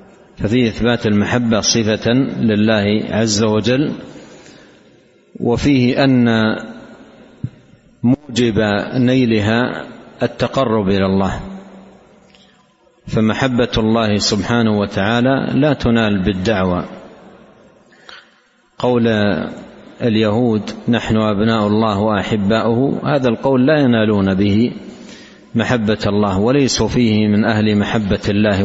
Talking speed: 85 wpm